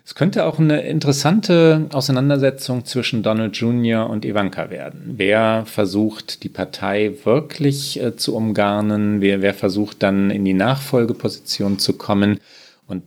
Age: 40-59